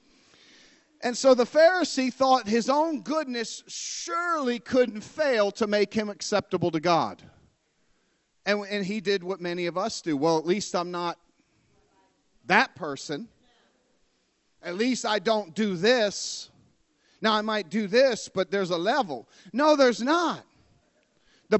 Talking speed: 145 wpm